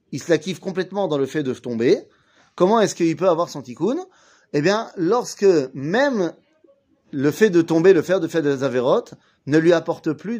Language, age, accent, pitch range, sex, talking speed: French, 30-49, French, 140-195 Hz, male, 210 wpm